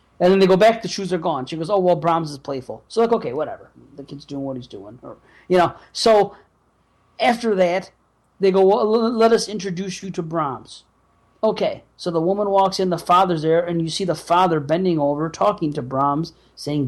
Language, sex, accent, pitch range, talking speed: English, male, American, 140-185 Hz, 215 wpm